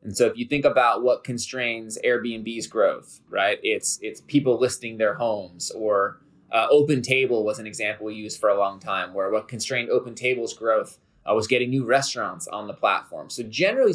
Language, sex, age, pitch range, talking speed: English, male, 20-39, 110-135 Hz, 200 wpm